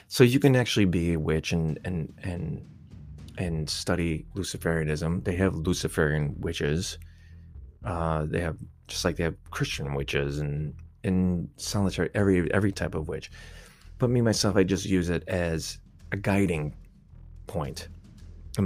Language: English